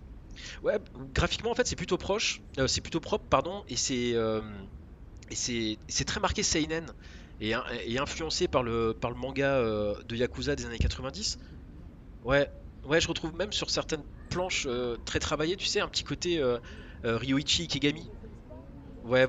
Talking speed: 175 wpm